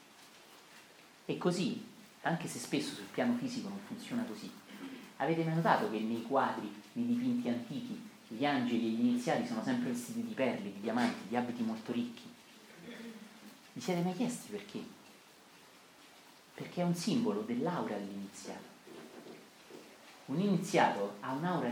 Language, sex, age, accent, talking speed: Italian, male, 40-59, native, 140 wpm